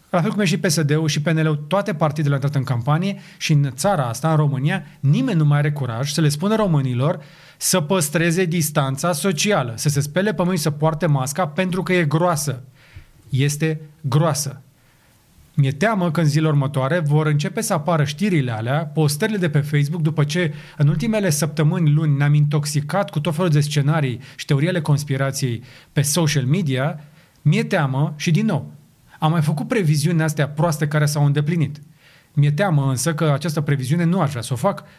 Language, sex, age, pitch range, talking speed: Romanian, male, 30-49, 145-175 Hz, 180 wpm